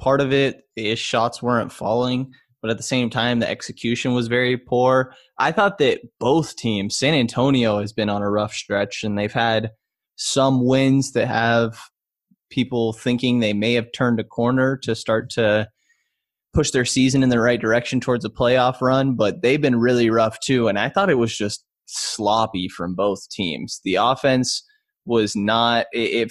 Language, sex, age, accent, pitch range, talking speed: English, male, 20-39, American, 110-130 Hz, 180 wpm